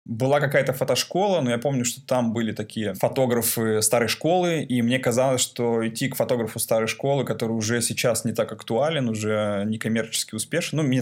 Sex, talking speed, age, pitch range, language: male, 180 wpm, 20-39, 110-125 Hz, Russian